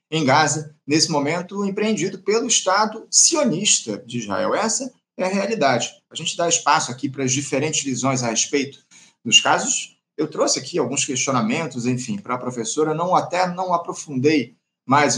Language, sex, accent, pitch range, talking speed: Portuguese, male, Brazilian, 135-195 Hz, 160 wpm